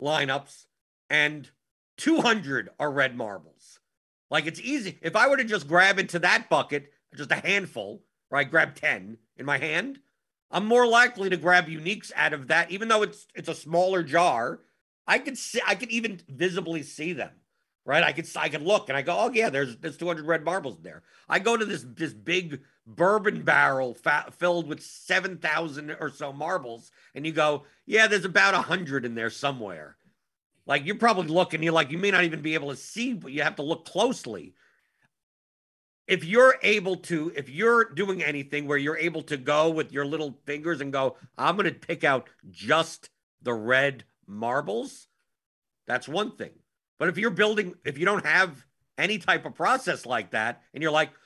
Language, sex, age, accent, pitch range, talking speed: English, male, 50-69, American, 145-200 Hz, 190 wpm